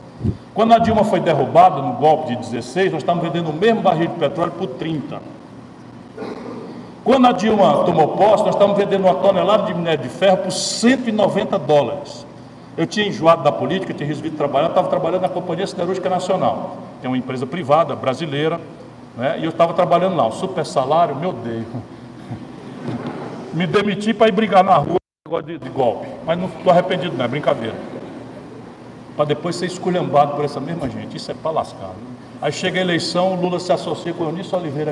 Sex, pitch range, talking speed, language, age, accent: male, 160-200 Hz, 180 wpm, Portuguese, 60-79, Brazilian